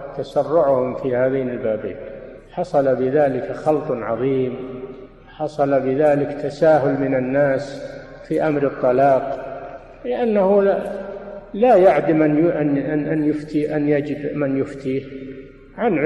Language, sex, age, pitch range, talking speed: Arabic, male, 50-69, 135-170 Hz, 100 wpm